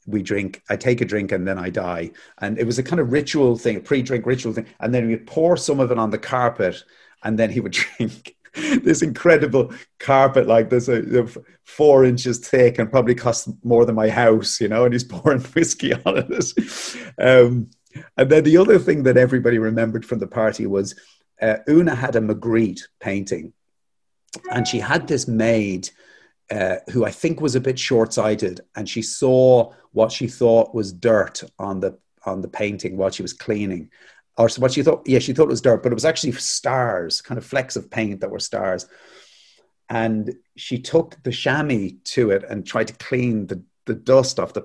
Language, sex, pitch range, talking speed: English, male, 110-130 Hz, 200 wpm